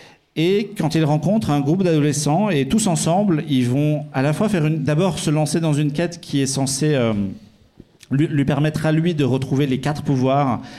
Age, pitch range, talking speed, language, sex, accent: 40-59, 135-165 Hz, 205 wpm, French, male, French